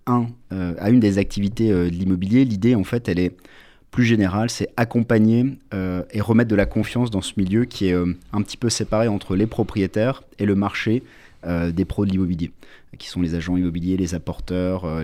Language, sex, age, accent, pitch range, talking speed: French, male, 30-49, French, 90-115 Hz, 210 wpm